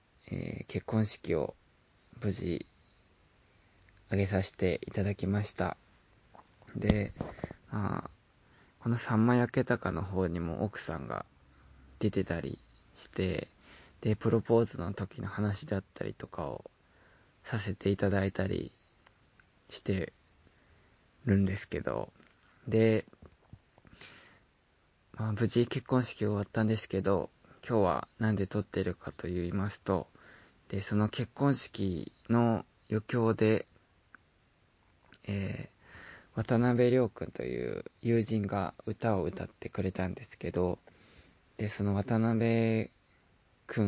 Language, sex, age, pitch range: Japanese, male, 20-39, 95-115 Hz